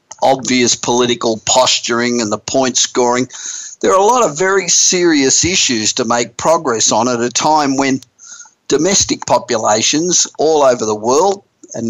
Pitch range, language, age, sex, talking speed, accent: 120-145 Hz, English, 50-69, male, 150 wpm, Australian